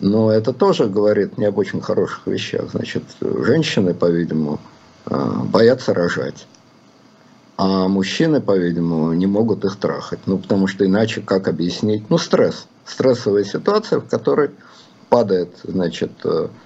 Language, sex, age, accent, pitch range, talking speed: Russian, male, 50-69, native, 100-130 Hz, 125 wpm